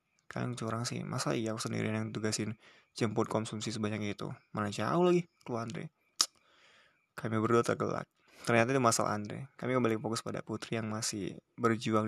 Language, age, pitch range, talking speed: Indonesian, 20-39, 110-125 Hz, 165 wpm